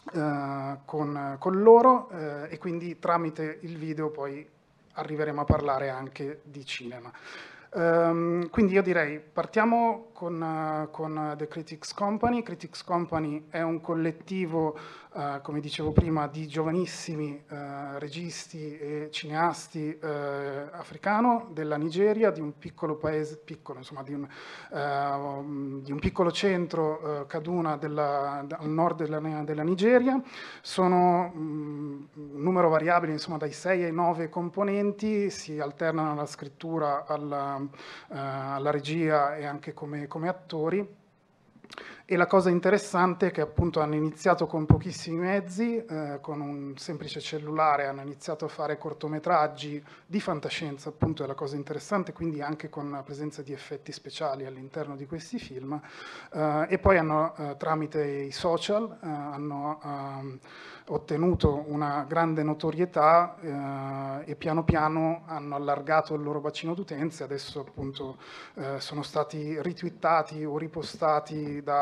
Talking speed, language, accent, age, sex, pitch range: 135 wpm, Italian, native, 30-49, male, 145-170 Hz